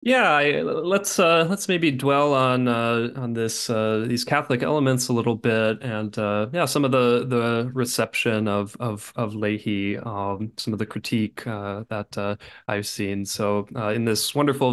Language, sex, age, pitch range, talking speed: English, male, 20-39, 105-130 Hz, 185 wpm